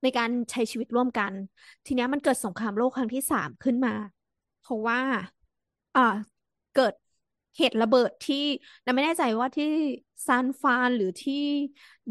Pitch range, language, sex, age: 220-275 Hz, Thai, female, 20-39